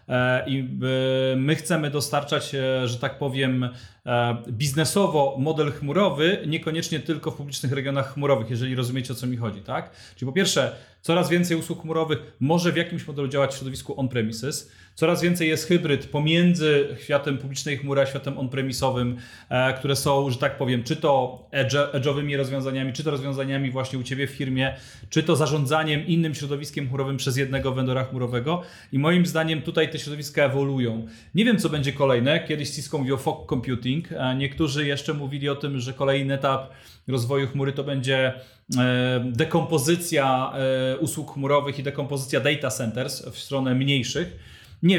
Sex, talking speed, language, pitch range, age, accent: male, 155 wpm, Polish, 130-150 Hz, 30-49, native